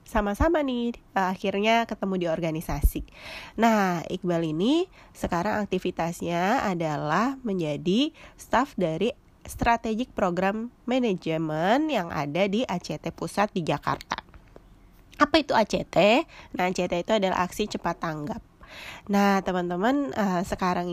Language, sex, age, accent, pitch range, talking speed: Indonesian, female, 20-39, native, 165-200 Hz, 110 wpm